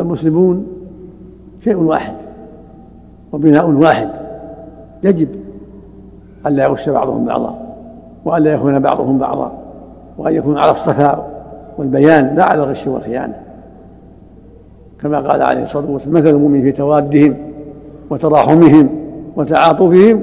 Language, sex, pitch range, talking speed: Arabic, male, 135-165 Hz, 100 wpm